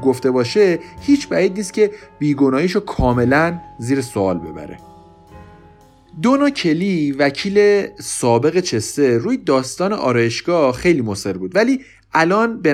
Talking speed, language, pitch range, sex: 120 wpm, Persian, 120-180 Hz, male